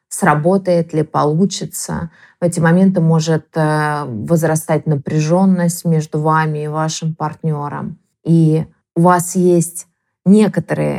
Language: Russian